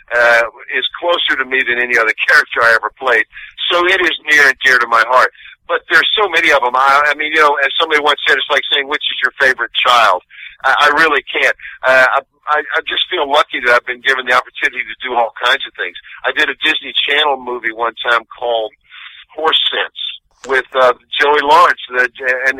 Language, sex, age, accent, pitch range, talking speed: English, male, 50-69, American, 120-150 Hz, 220 wpm